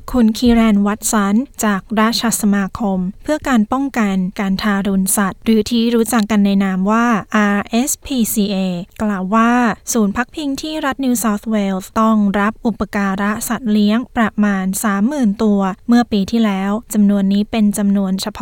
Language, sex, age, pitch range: Thai, female, 20-39, 200-230 Hz